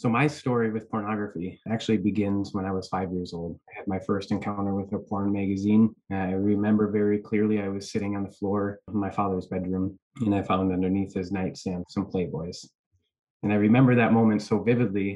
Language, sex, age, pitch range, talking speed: English, male, 20-39, 95-105 Hz, 200 wpm